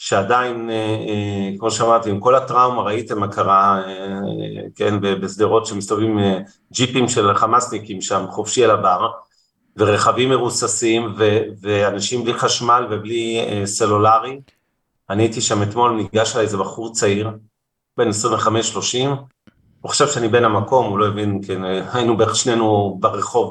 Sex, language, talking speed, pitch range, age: male, Hebrew, 130 wpm, 100-125 Hz, 40-59